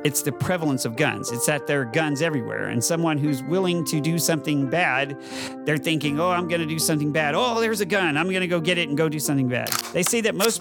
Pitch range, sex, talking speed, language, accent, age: 130-170 Hz, male, 265 wpm, English, American, 50-69